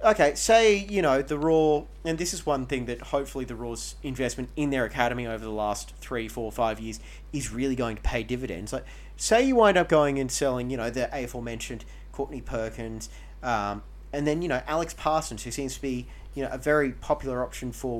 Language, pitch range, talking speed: English, 115-145 Hz, 215 wpm